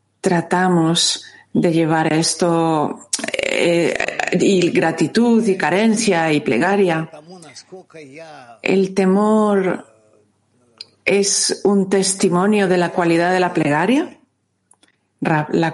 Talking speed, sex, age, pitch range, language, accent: 90 wpm, female, 40-59, 170-205 Hz, Spanish, Spanish